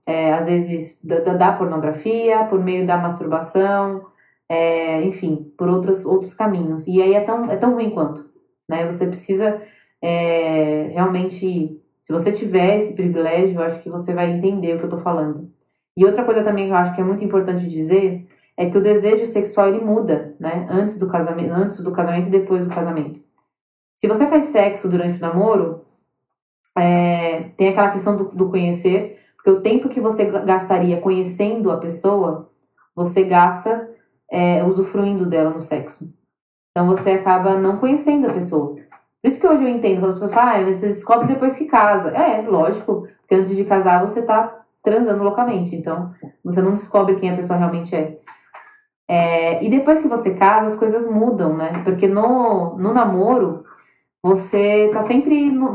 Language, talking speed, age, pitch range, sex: Portuguese, 180 wpm, 20-39, 170-210 Hz, female